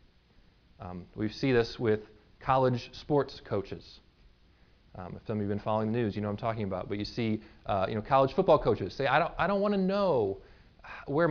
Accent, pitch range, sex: American, 105-170 Hz, male